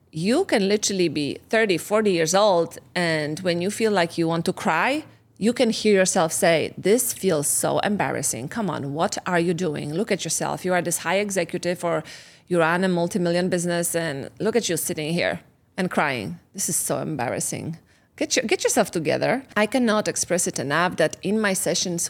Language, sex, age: English, female, 30-49